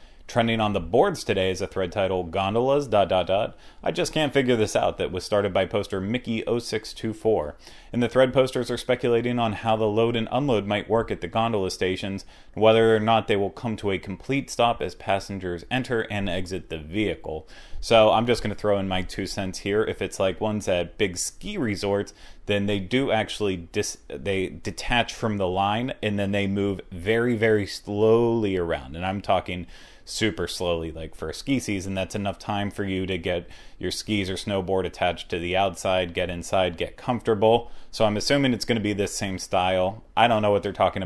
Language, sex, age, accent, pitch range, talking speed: English, male, 30-49, American, 95-115 Hz, 210 wpm